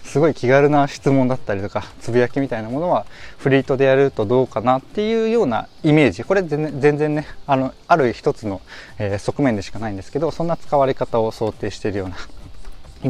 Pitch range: 110-155 Hz